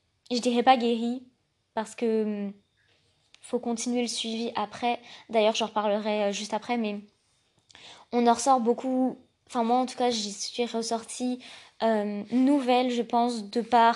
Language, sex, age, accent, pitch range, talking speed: French, female, 20-39, French, 220-250 Hz, 150 wpm